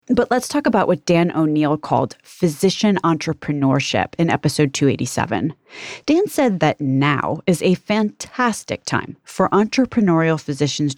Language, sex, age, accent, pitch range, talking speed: English, female, 30-49, American, 150-185 Hz, 130 wpm